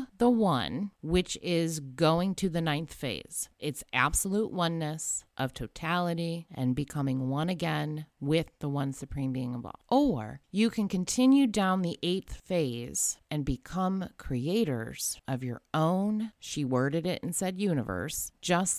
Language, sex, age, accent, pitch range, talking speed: English, female, 30-49, American, 130-175 Hz, 145 wpm